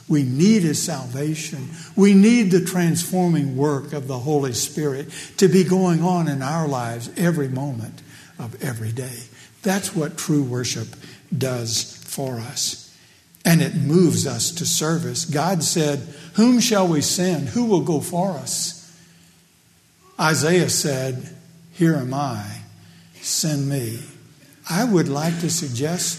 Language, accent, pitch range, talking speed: English, American, 140-180 Hz, 140 wpm